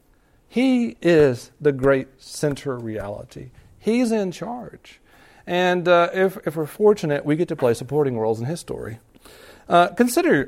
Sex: male